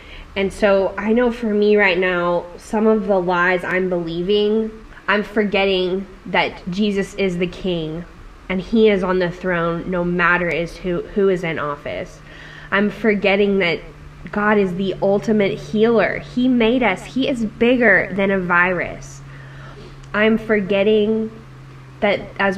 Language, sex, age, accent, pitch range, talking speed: English, female, 10-29, American, 175-210 Hz, 145 wpm